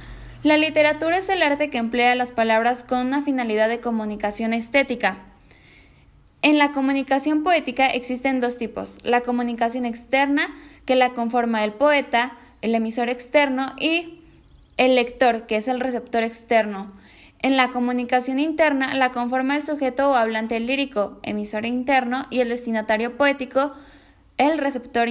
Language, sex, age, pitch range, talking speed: Spanish, female, 10-29, 235-280 Hz, 145 wpm